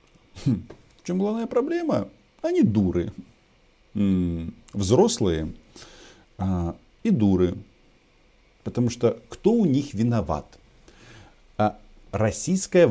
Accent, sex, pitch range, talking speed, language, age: native, male, 90-120 Hz, 75 wpm, Russian, 50-69